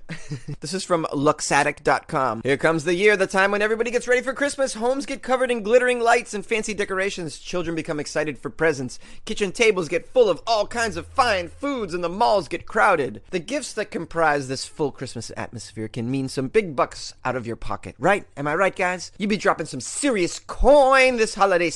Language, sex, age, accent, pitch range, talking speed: English, male, 30-49, American, 135-195 Hz, 205 wpm